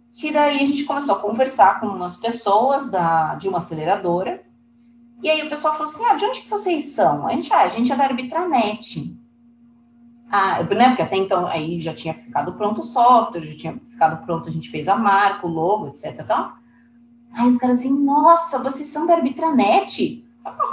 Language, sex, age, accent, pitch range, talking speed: Portuguese, female, 30-49, Brazilian, 195-260 Hz, 205 wpm